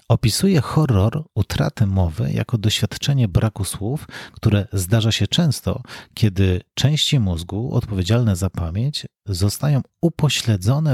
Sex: male